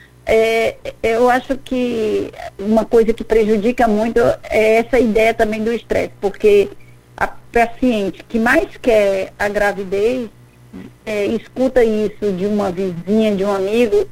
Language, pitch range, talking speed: Portuguese, 205-245 Hz, 135 wpm